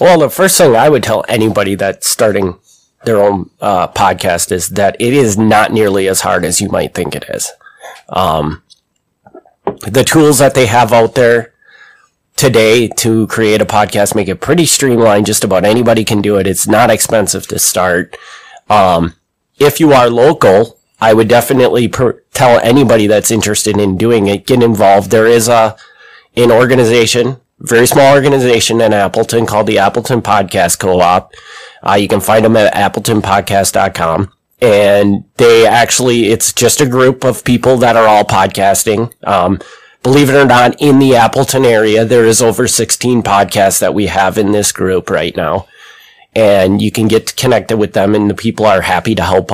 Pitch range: 100-125 Hz